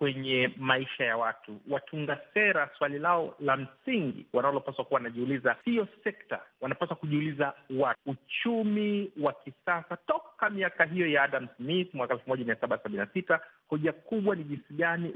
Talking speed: 135 wpm